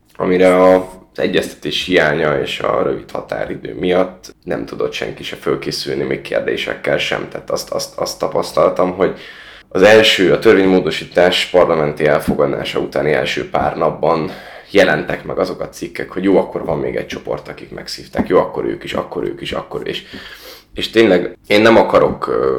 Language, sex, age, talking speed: Hungarian, male, 10-29, 160 wpm